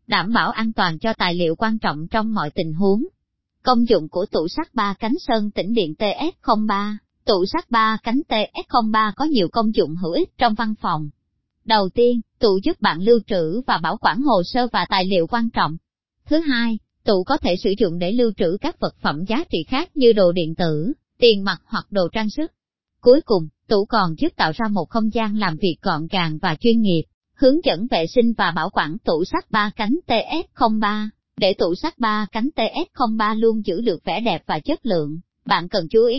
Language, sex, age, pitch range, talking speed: Vietnamese, male, 20-39, 190-250 Hz, 210 wpm